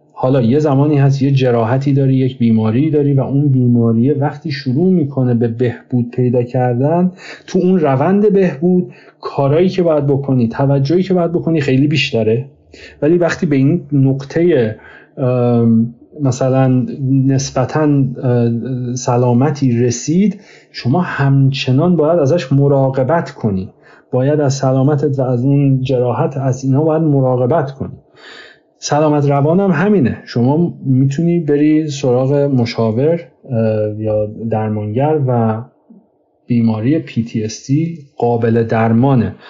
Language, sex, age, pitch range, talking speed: Persian, male, 40-59, 125-155 Hz, 115 wpm